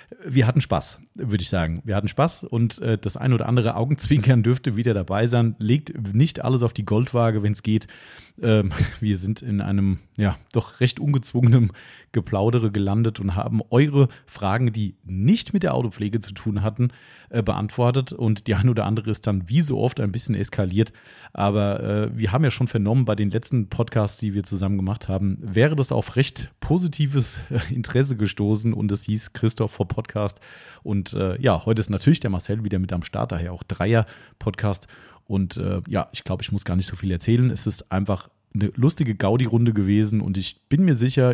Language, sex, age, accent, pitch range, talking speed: German, male, 40-59, German, 100-125 Hz, 195 wpm